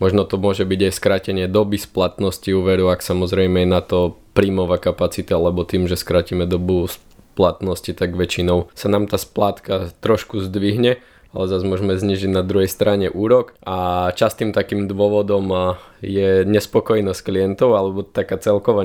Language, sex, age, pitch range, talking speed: Slovak, male, 20-39, 90-100 Hz, 150 wpm